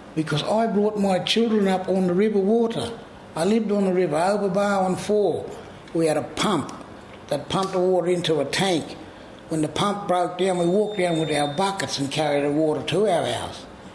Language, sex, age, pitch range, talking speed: English, male, 60-79, 145-200 Hz, 200 wpm